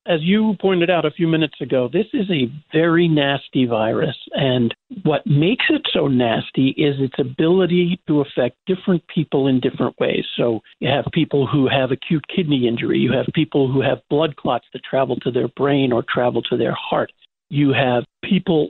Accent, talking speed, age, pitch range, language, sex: American, 190 wpm, 50-69, 135-175 Hz, English, male